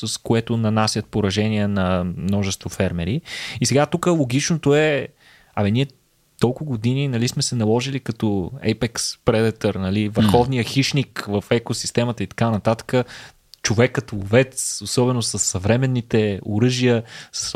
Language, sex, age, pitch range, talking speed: Bulgarian, male, 20-39, 105-130 Hz, 130 wpm